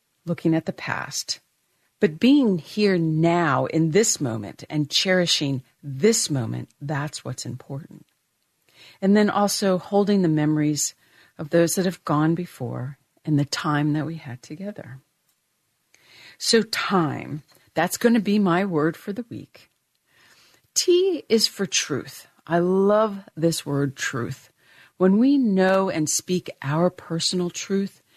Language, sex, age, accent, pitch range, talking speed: English, female, 50-69, American, 150-195 Hz, 140 wpm